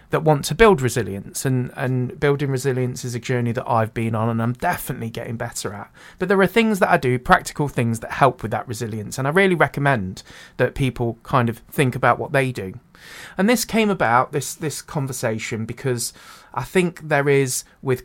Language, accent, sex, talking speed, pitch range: English, British, male, 205 wpm, 120-145 Hz